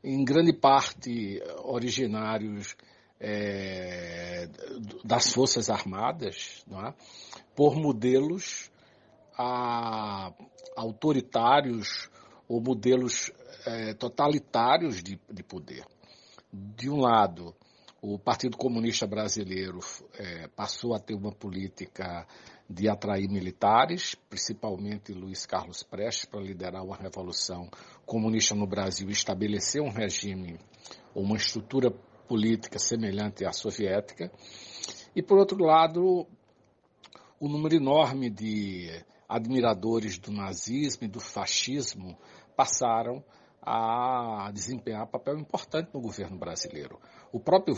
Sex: male